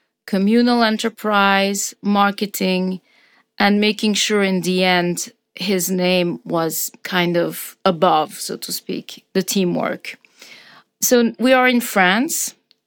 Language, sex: English, female